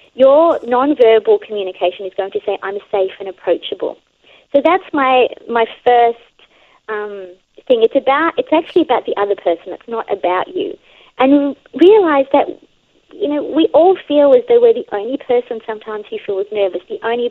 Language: English